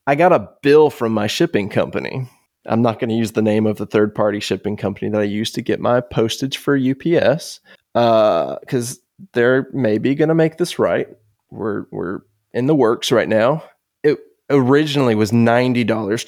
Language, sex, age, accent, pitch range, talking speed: English, male, 20-39, American, 115-155 Hz, 180 wpm